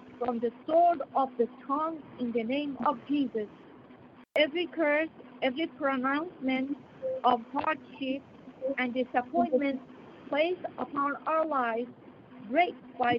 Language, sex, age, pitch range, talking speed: English, female, 50-69, 235-300 Hz, 115 wpm